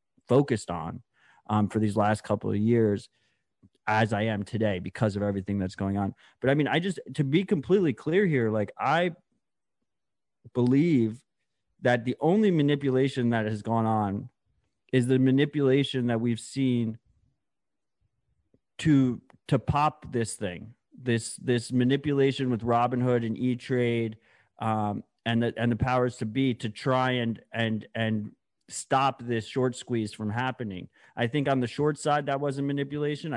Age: 30-49